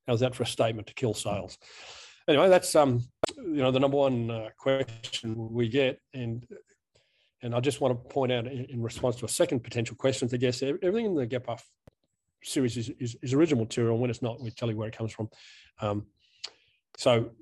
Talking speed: 215 wpm